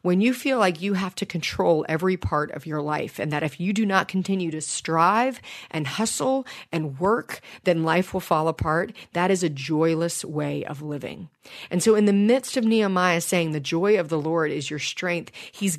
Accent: American